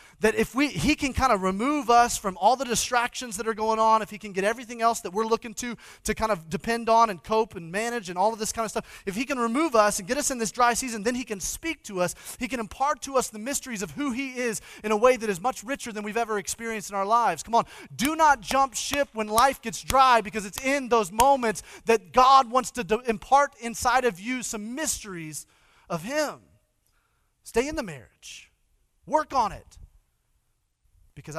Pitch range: 140-235 Hz